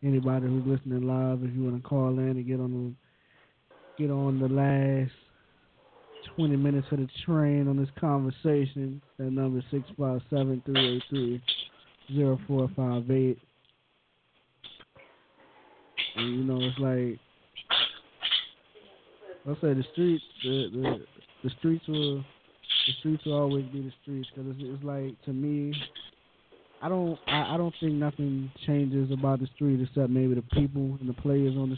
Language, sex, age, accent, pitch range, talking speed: English, male, 20-39, American, 130-140 Hz, 160 wpm